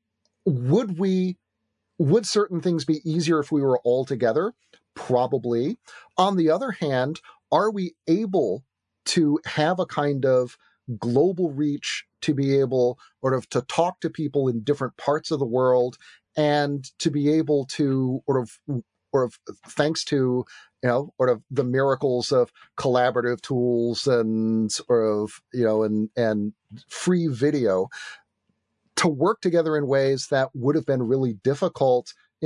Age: 40-59